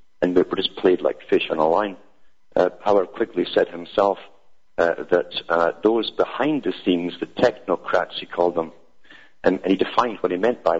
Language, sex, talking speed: English, male, 190 wpm